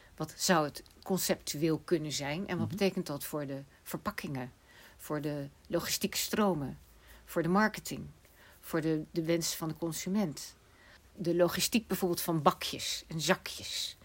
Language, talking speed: Dutch, 140 wpm